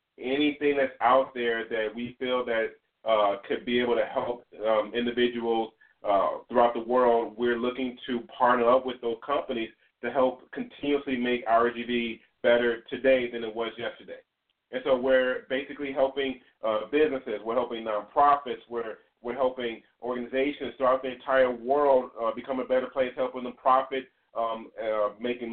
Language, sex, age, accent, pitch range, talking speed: English, male, 30-49, American, 120-135 Hz, 160 wpm